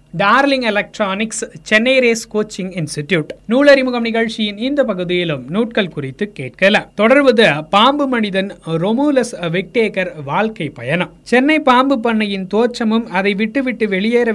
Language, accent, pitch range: Tamil, native, 180-235 Hz